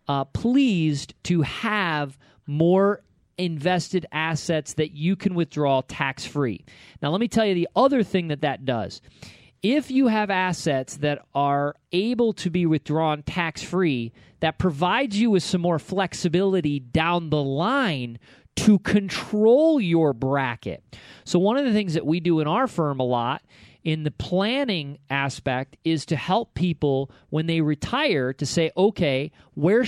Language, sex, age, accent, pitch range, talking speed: English, male, 40-59, American, 145-190 Hz, 155 wpm